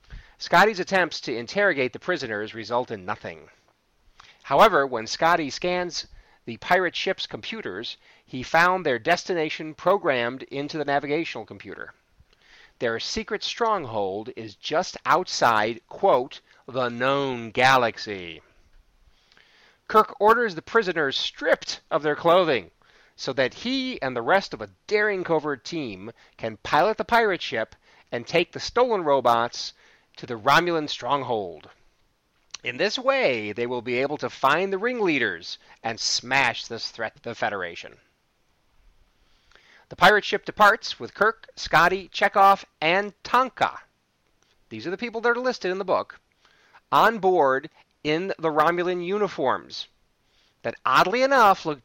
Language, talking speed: English, 135 wpm